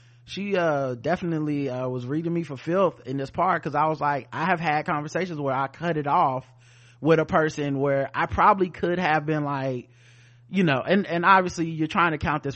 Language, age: English, 30-49